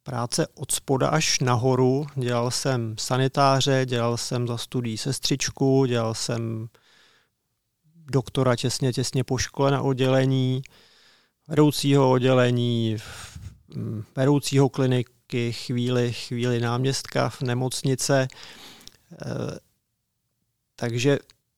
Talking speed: 85 wpm